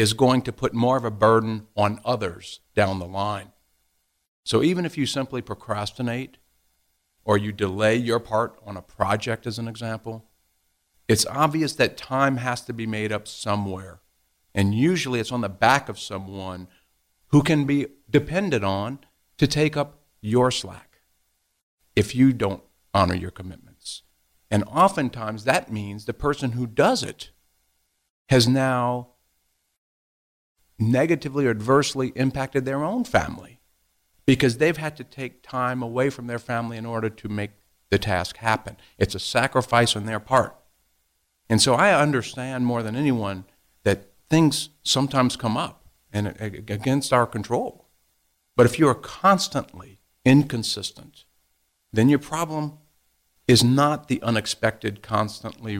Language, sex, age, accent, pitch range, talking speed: English, male, 50-69, American, 95-130 Hz, 145 wpm